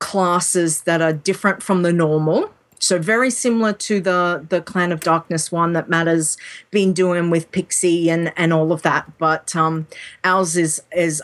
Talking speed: 180 wpm